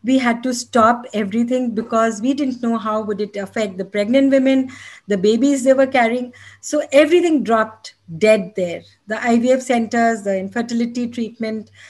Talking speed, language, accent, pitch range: 160 wpm, English, Indian, 200-245 Hz